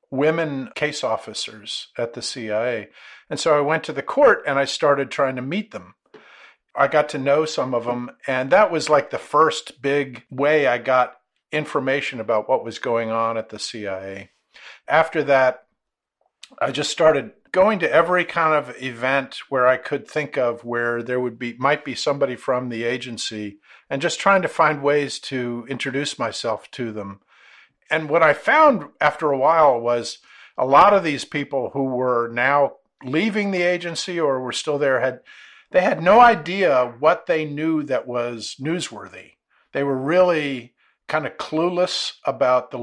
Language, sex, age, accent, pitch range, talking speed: English, male, 50-69, American, 125-155 Hz, 175 wpm